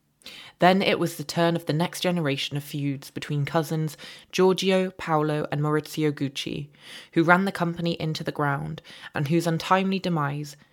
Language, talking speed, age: English, 160 wpm, 20-39